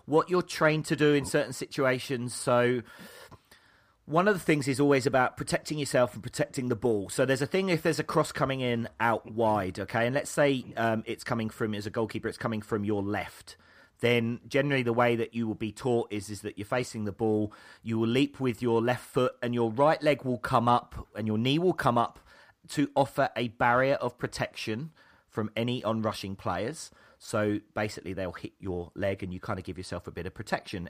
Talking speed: 220 wpm